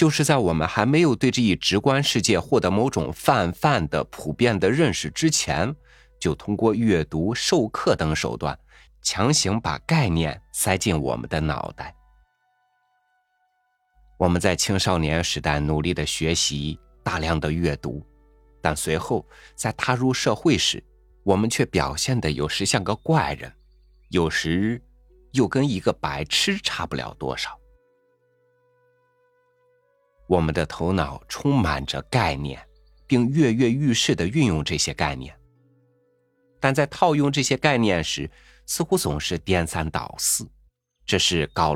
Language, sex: Chinese, male